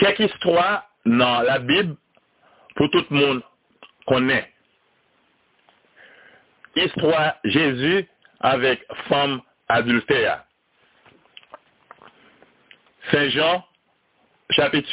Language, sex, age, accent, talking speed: French, male, 60-79, French, 70 wpm